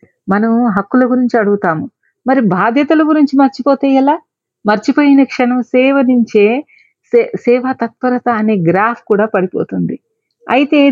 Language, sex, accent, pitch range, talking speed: Telugu, female, native, 205-265 Hz, 115 wpm